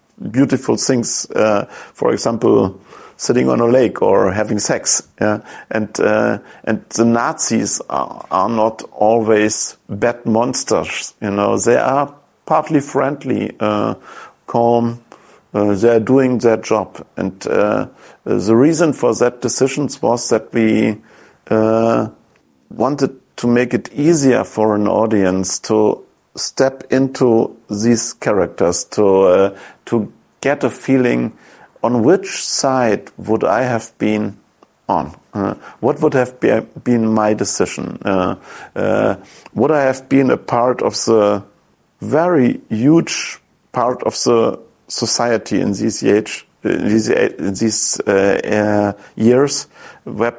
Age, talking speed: 50-69, 125 wpm